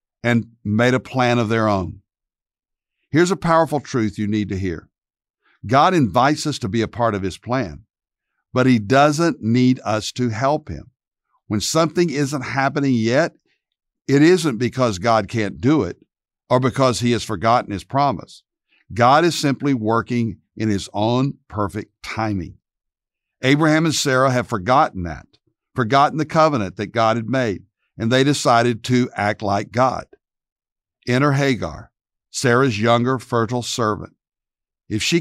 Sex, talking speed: male, 150 wpm